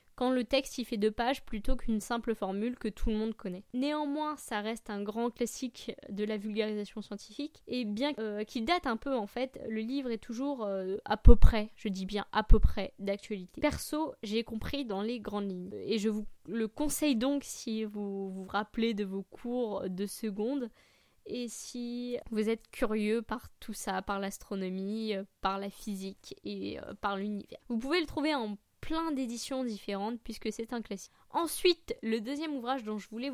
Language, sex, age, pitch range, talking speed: French, female, 20-39, 205-255 Hz, 190 wpm